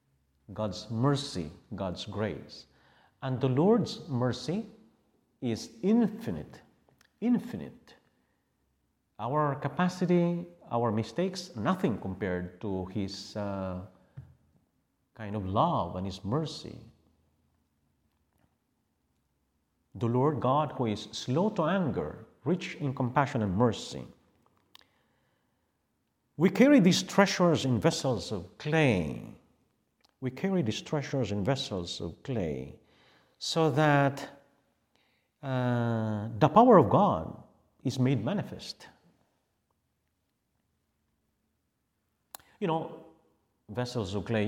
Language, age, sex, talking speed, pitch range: English, 50-69, male, 95 wpm, 95-150 Hz